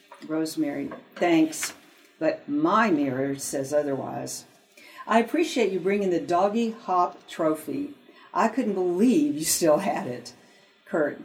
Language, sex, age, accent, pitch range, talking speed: English, female, 60-79, American, 160-240 Hz, 125 wpm